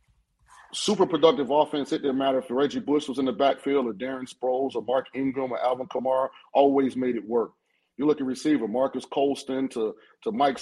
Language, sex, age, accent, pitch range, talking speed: English, male, 30-49, American, 130-165 Hz, 200 wpm